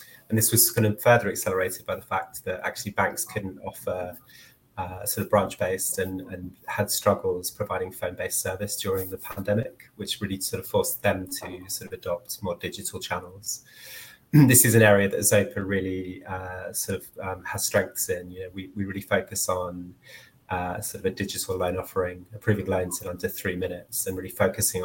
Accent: British